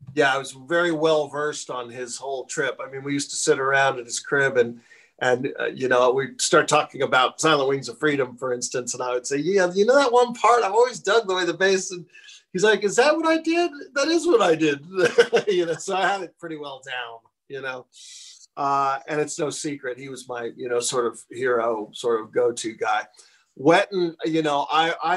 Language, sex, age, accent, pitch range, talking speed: English, male, 40-59, American, 130-185 Hz, 235 wpm